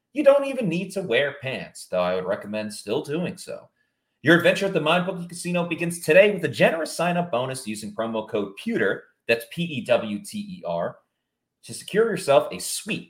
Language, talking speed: English, 165 wpm